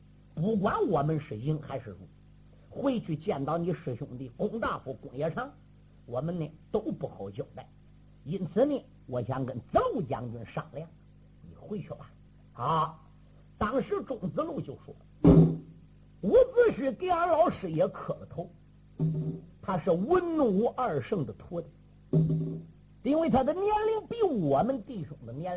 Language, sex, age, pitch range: Chinese, male, 50-69, 140-210 Hz